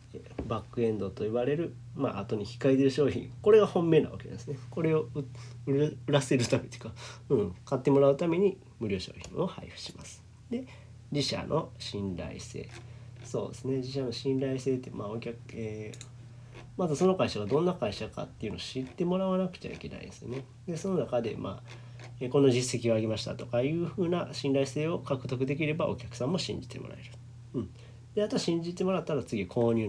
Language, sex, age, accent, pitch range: Japanese, male, 40-59, native, 115-140 Hz